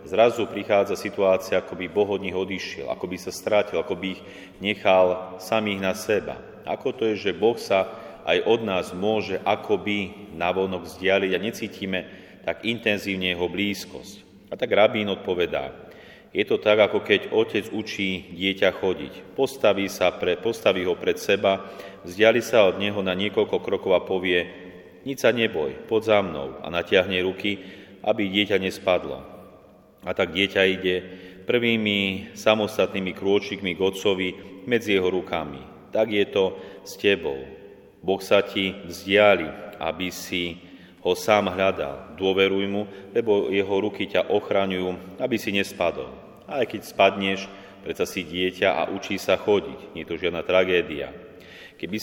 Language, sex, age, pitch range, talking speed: Slovak, male, 40-59, 95-105 Hz, 155 wpm